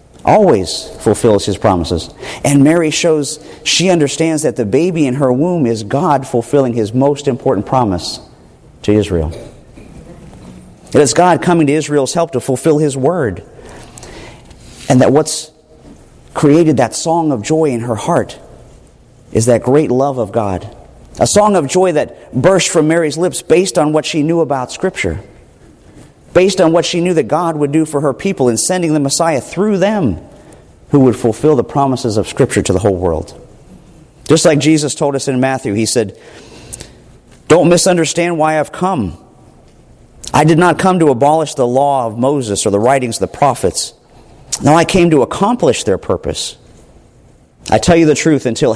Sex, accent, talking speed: male, American, 170 wpm